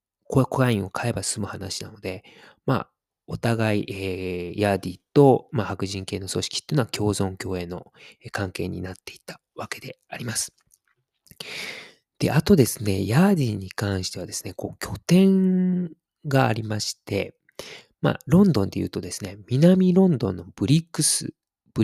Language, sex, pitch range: Japanese, male, 100-150 Hz